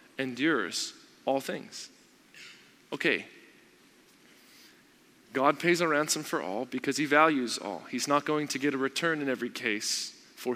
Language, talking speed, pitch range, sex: English, 140 wpm, 140-175 Hz, male